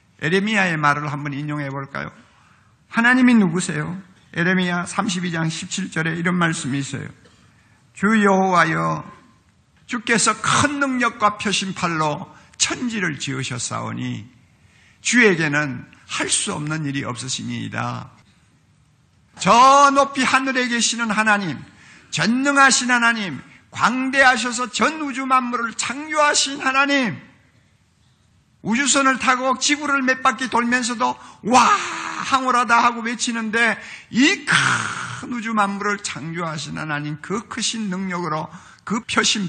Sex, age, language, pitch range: male, 50-69, Korean, 145-240 Hz